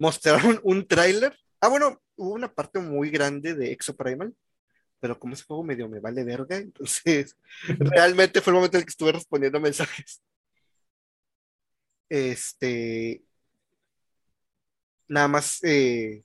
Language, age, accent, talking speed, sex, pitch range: Spanish, 30-49, Mexican, 135 wpm, male, 130-160 Hz